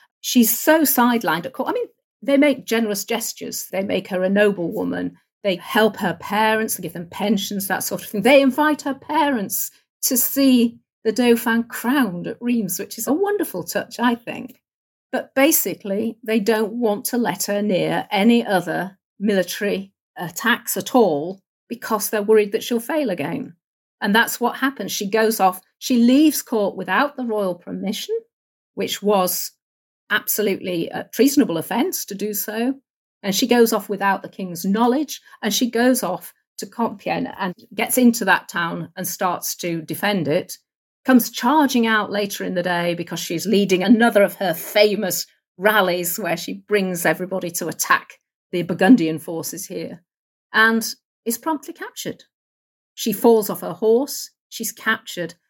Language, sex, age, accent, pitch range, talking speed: English, female, 50-69, British, 190-245 Hz, 165 wpm